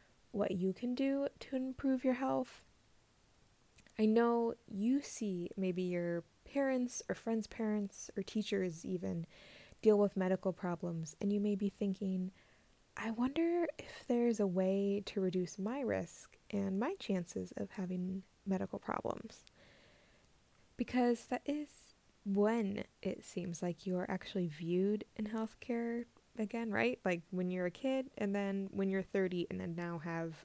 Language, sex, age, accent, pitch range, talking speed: English, female, 20-39, American, 180-230 Hz, 150 wpm